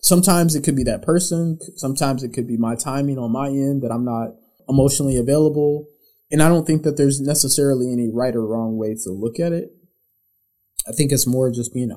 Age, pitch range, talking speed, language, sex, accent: 20-39, 115-150 Hz, 210 wpm, English, male, American